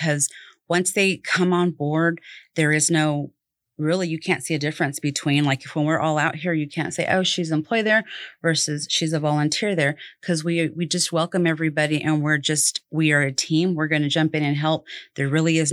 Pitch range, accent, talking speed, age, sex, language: 145-165 Hz, American, 225 wpm, 30-49, female, English